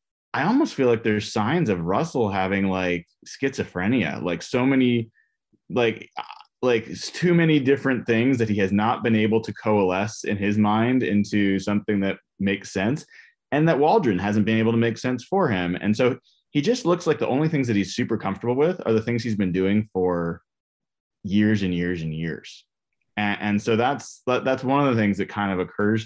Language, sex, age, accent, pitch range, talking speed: English, male, 20-39, American, 95-125 Hz, 200 wpm